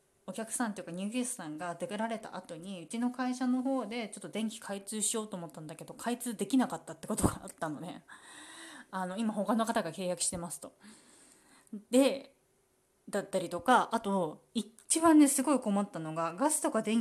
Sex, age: female, 20-39